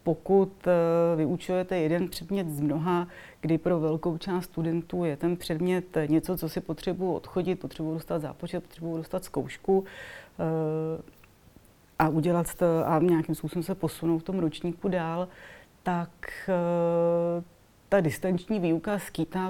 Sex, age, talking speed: female, 30-49, 140 wpm